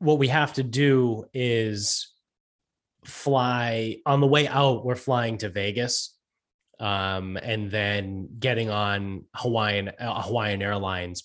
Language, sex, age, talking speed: English, male, 20-39, 125 wpm